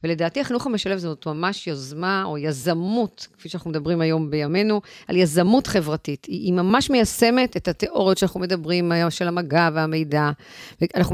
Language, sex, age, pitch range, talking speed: Hebrew, female, 40-59, 165-210 Hz, 145 wpm